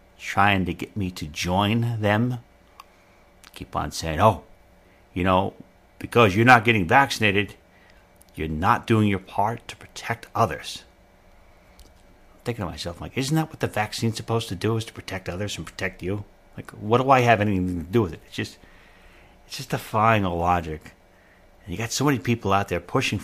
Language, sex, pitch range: English, male, 95-115 Hz